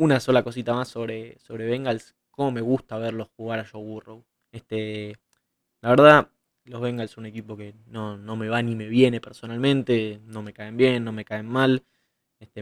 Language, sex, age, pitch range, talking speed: Spanish, male, 20-39, 110-125 Hz, 195 wpm